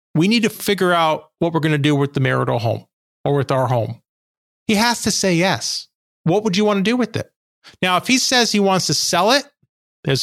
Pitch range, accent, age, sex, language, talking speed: 160-200 Hz, American, 40-59, male, English, 240 wpm